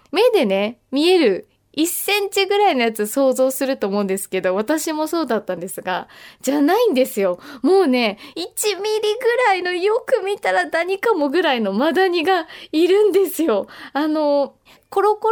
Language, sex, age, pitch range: Japanese, female, 20-39, 255-355 Hz